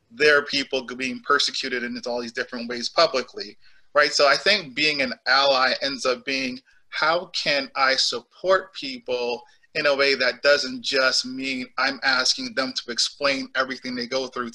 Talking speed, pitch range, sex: 170 wpm, 130-160 Hz, male